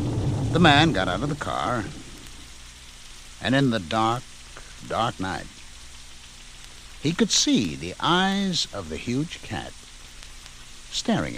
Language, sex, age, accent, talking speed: English, male, 60-79, American, 120 wpm